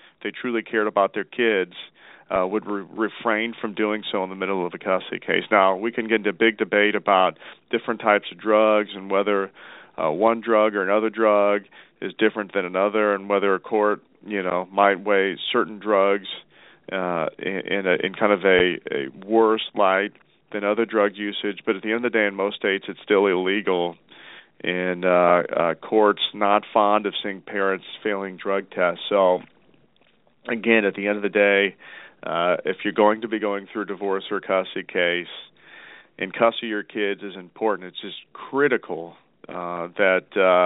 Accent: American